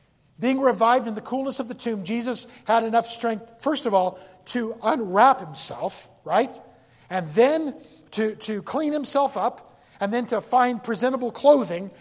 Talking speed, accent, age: 160 wpm, American, 50-69